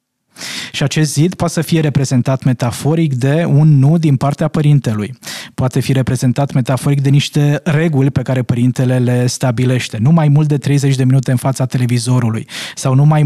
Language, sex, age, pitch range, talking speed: Romanian, male, 20-39, 125-150 Hz, 175 wpm